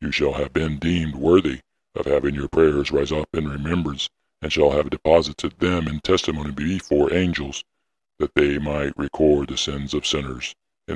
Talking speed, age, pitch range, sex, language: 175 wpm, 60-79, 70-80 Hz, female, English